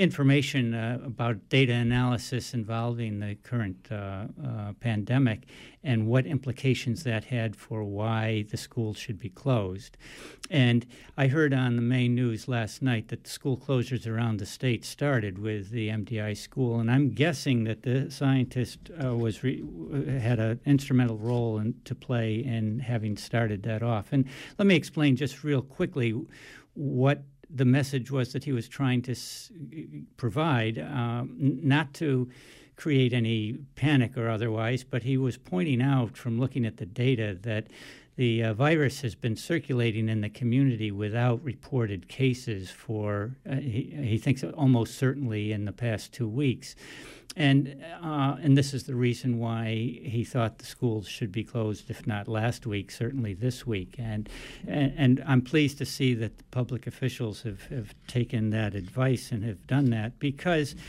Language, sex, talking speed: English, male, 165 wpm